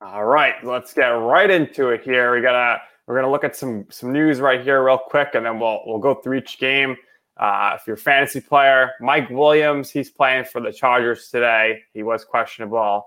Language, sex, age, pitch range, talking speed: English, male, 20-39, 110-130 Hz, 210 wpm